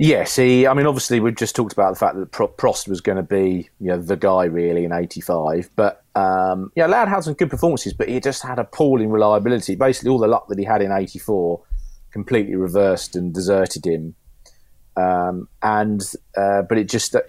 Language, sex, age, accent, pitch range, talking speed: English, male, 30-49, British, 90-110 Hz, 200 wpm